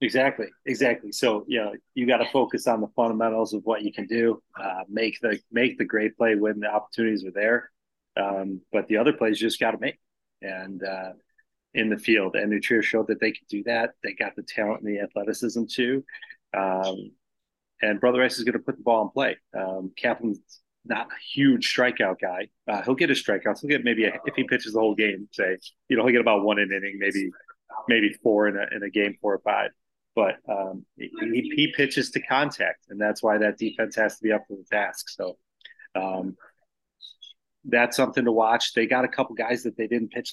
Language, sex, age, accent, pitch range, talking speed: English, male, 30-49, American, 100-115 Hz, 215 wpm